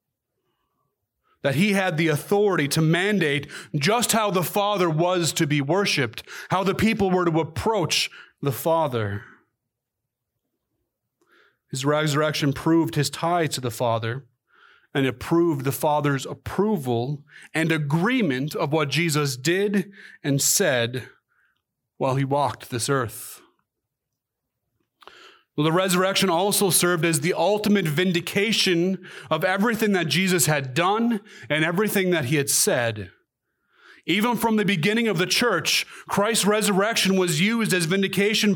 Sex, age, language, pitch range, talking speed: male, 30-49, English, 140-195 Hz, 130 wpm